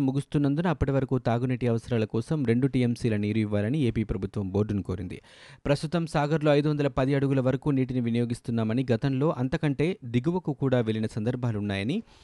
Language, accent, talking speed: Telugu, native, 130 wpm